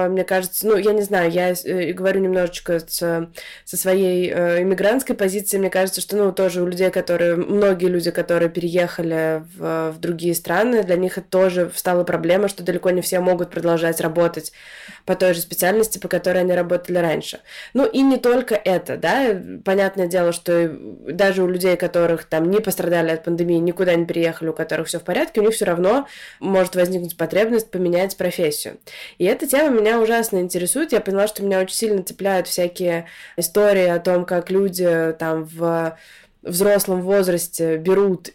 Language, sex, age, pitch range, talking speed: Russian, female, 20-39, 175-210 Hz, 170 wpm